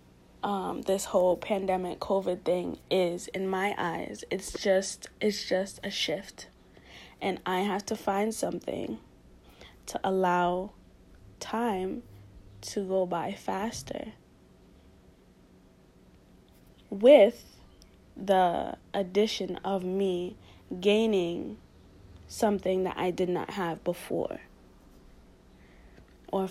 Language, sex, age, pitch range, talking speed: English, female, 20-39, 180-200 Hz, 95 wpm